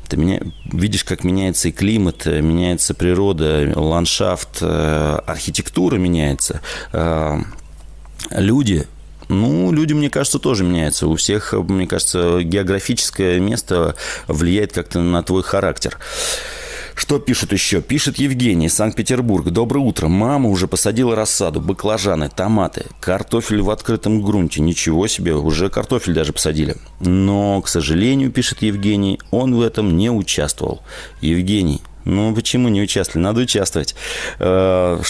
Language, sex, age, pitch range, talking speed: Russian, male, 30-49, 80-105 Hz, 120 wpm